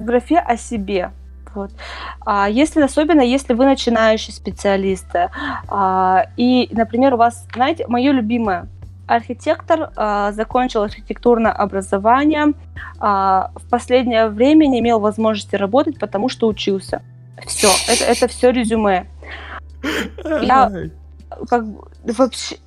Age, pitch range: 20-39, 210-265 Hz